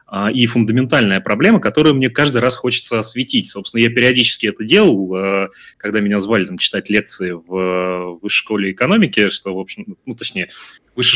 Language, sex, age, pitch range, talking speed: Russian, male, 30-49, 110-130 Hz, 160 wpm